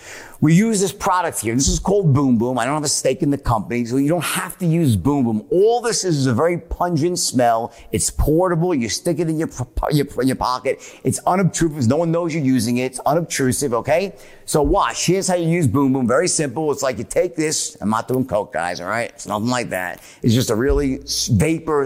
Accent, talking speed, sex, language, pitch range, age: American, 240 wpm, male, English, 130-165 Hz, 50-69